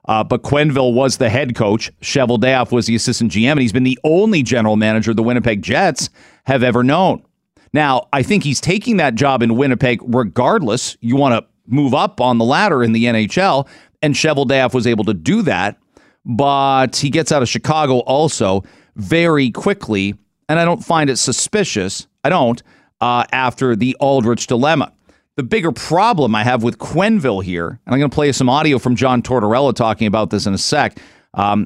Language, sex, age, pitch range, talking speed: English, male, 40-59, 110-135 Hz, 195 wpm